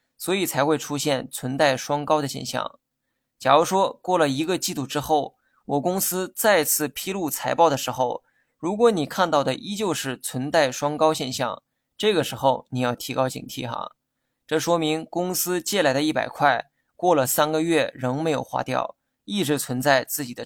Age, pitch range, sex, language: 20-39, 135-170 Hz, male, Chinese